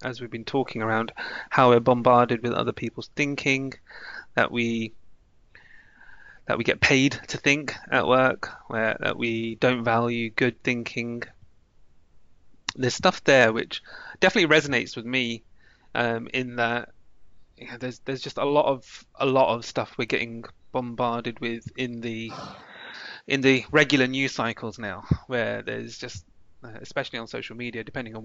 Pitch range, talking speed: 110-130 Hz, 155 wpm